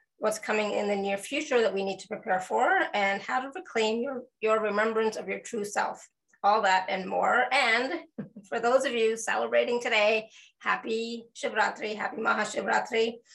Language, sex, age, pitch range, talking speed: English, female, 20-39, 205-245 Hz, 170 wpm